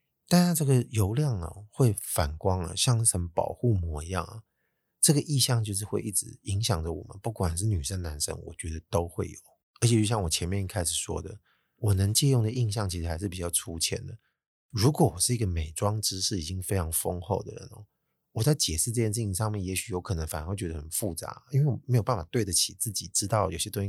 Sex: male